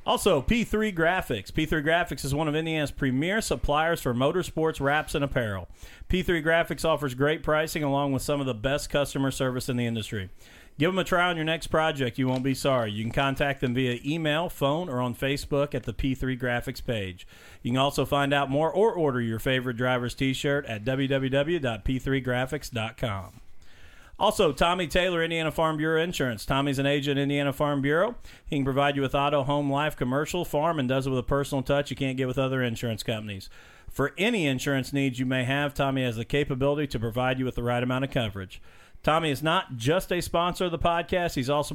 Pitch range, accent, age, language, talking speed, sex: 125-155 Hz, American, 40-59, English, 205 wpm, male